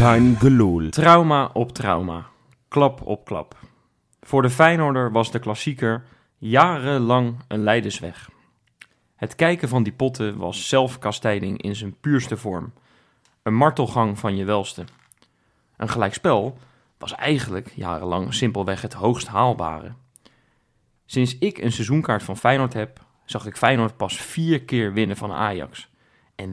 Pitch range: 110-135 Hz